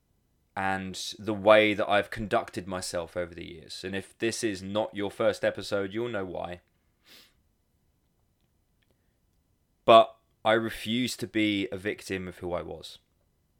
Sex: male